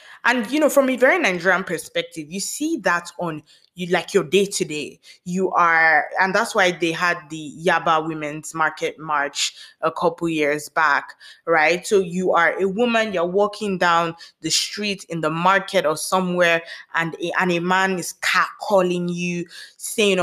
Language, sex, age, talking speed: English, female, 20-39, 170 wpm